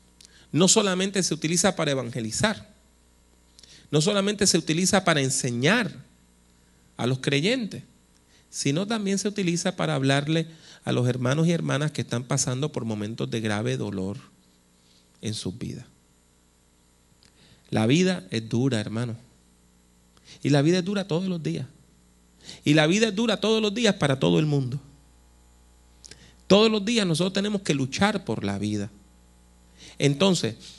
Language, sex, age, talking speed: English, male, 40-59, 140 wpm